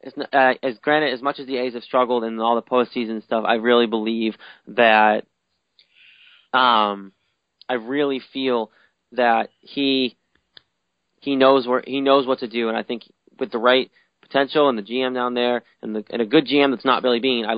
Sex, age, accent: male, 20-39, American